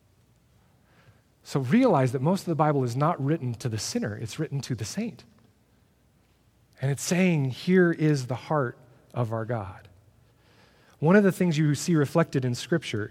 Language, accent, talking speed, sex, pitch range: English, American, 170 wpm, male, 115-145 Hz